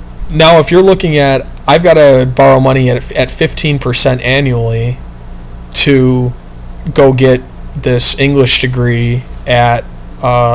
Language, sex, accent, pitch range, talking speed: English, male, American, 120-140 Hz, 125 wpm